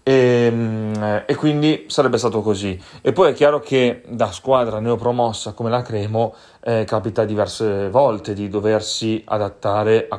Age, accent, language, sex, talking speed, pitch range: 30-49, native, Italian, male, 145 wpm, 105-120 Hz